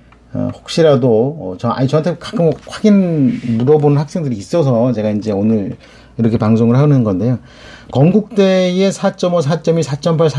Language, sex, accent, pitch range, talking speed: English, male, Korean, 110-155 Hz, 115 wpm